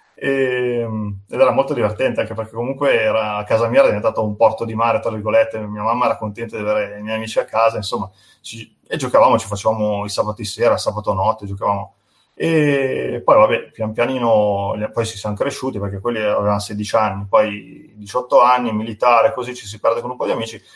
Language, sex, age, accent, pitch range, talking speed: Italian, male, 30-49, native, 105-135 Hz, 200 wpm